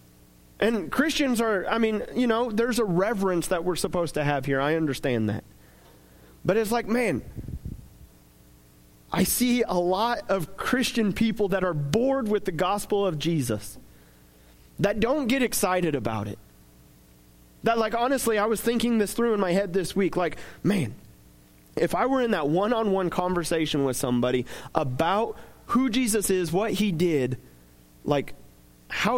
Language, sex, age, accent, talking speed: English, male, 30-49, American, 160 wpm